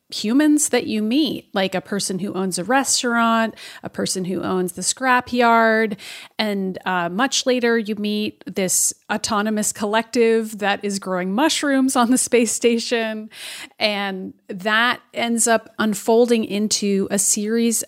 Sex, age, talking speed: female, 30-49, 140 wpm